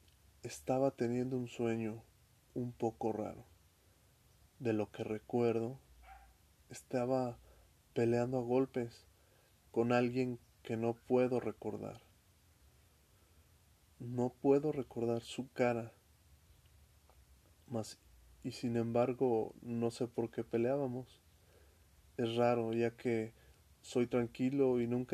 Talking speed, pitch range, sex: 100 wpm, 90-120 Hz, male